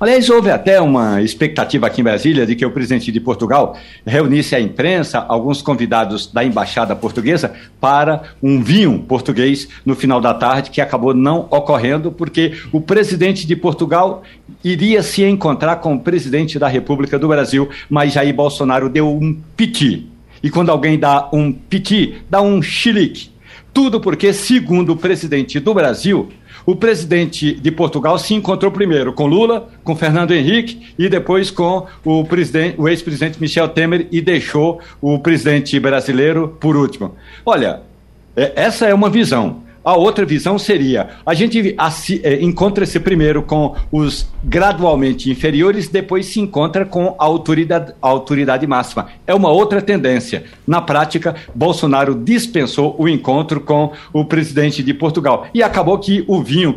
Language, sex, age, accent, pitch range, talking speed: Portuguese, male, 60-79, Brazilian, 130-175 Hz, 155 wpm